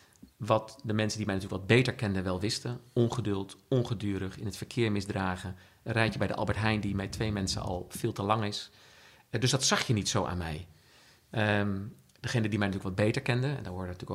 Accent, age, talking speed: Dutch, 50-69, 220 wpm